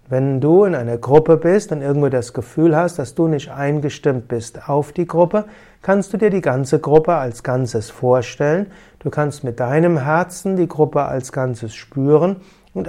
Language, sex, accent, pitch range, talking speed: German, male, German, 140-180 Hz, 180 wpm